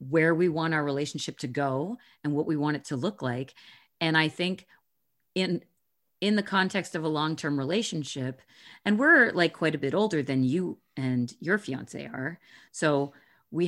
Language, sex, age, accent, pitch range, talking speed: English, female, 40-59, American, 130-180 Hz, 180 wpm